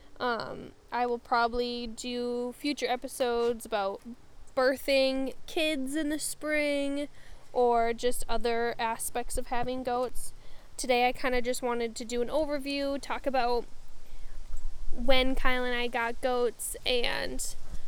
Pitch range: 230-270 Hz